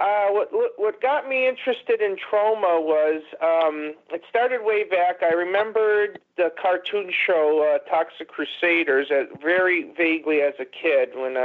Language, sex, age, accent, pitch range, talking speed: English, male, 40-59, American, 145-180 Hz, 150 wpm